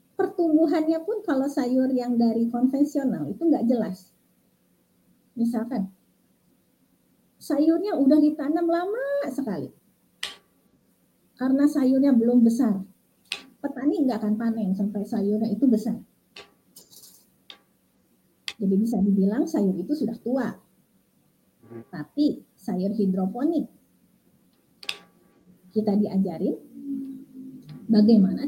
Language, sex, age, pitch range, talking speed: Indonesian, female, 30-49, 215-295 Hz, 85 wpm